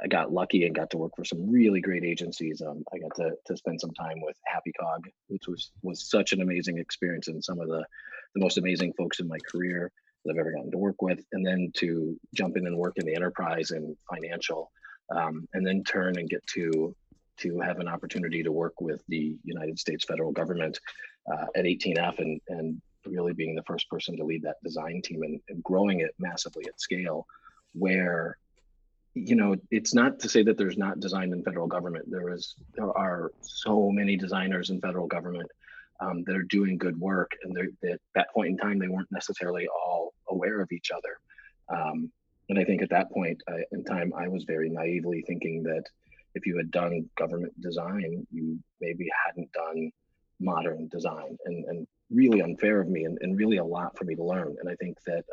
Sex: male